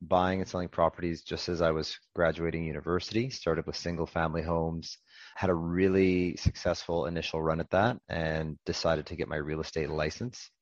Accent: American